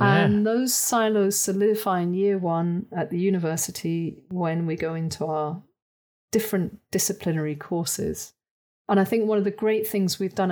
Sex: female